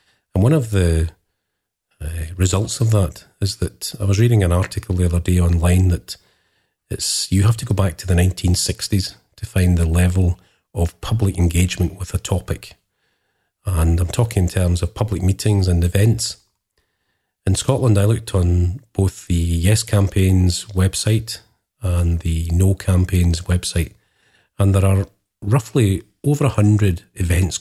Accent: British